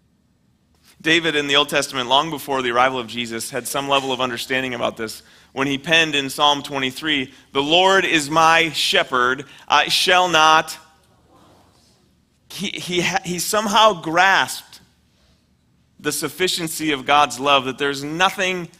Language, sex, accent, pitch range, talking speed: English, male, American, 135-180 Hz, 140 wpm